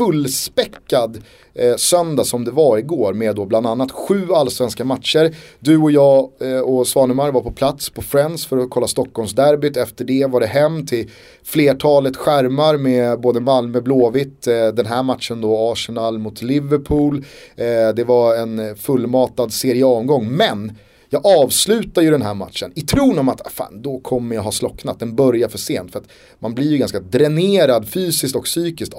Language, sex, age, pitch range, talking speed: Swedish, male, 30-49, 115-150 Hz, 180 wpm